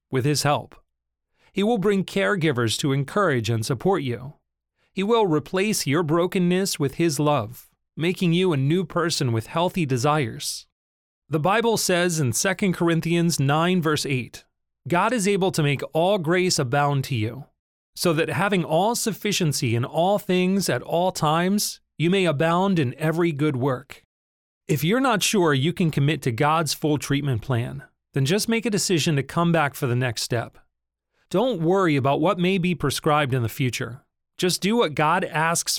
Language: English